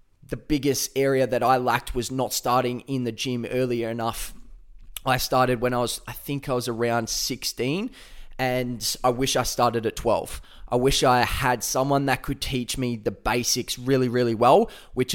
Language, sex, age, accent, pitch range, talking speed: English, male, 20-39, Australian, 115-130 Hz, 185 wpm